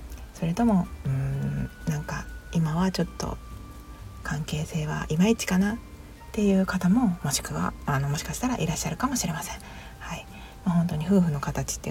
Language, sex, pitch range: Japanese, female, 135-185 Hz